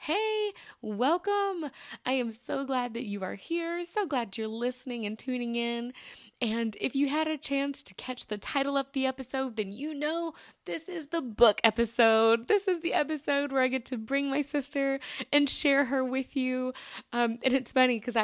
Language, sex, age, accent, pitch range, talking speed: English, female, 20-39, American, 195-265 Hz, 195 wpm